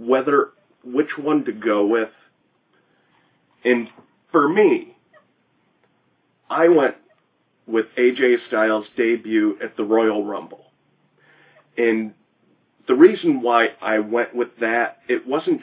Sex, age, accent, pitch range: male, 30-49, American, 110-155 Hz